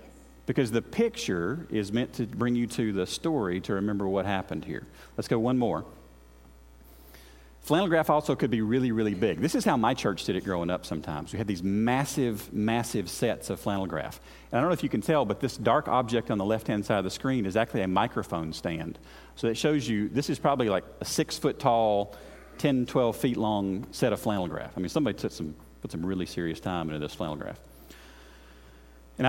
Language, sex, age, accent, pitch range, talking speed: English, male, 40-59, American, 75-125 Hz, 215 wpm